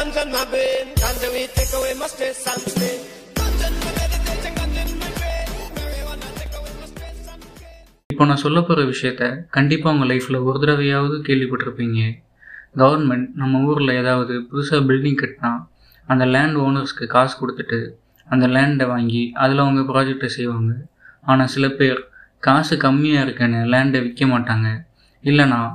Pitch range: 125-145 Hz